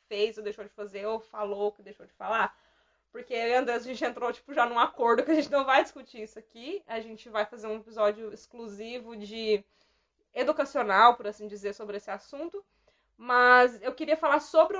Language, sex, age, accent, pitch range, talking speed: Portuguese, female, 20-39, Brazilian, 215-285 Hz, 205 wpm